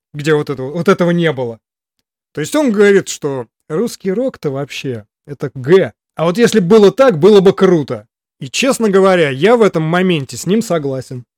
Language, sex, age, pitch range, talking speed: Russian, male, 20-39, 145-195 Hz, 185 wpm